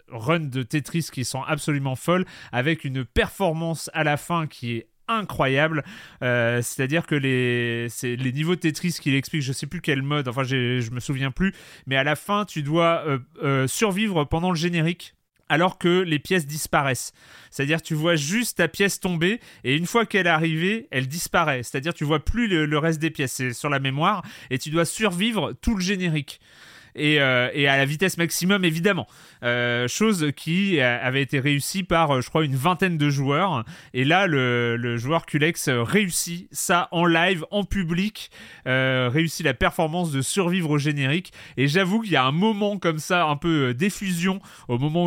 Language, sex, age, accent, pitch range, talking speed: French, male, 30-49, French, 135-175 Hz, 195 wpm